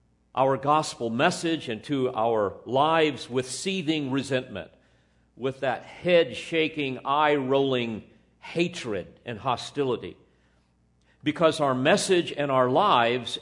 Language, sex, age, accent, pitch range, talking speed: English, male, 50-69, American, 110-160 Hz, 105 wpm